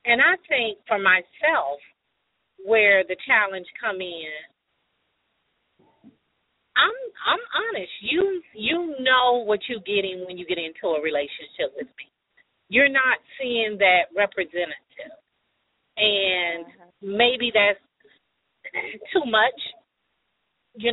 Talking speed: 110 wpm